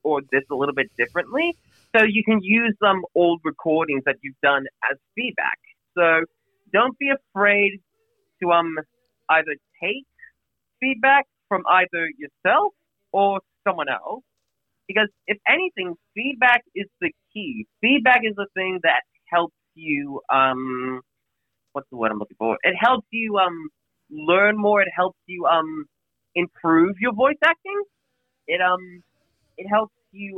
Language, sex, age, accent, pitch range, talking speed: English, male, 30-49, American, 150-215 Hz, 145 wpm